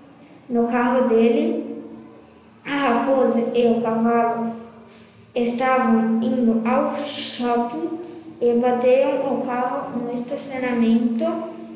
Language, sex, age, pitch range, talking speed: Portuguese, female, 10-29, 235-260 Hz, 90 wpm